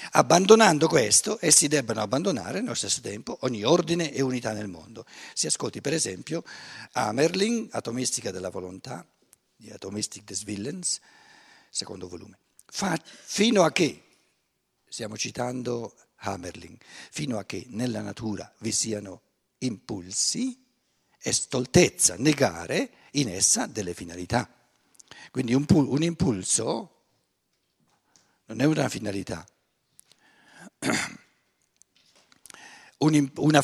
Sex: male